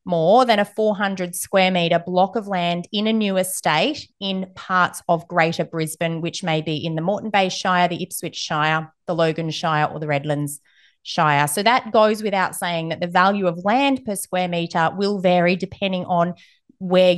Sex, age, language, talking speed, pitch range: female, 30-49, English, 190 wpm, 170-205 Hz